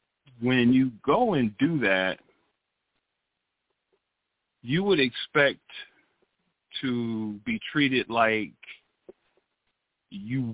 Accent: American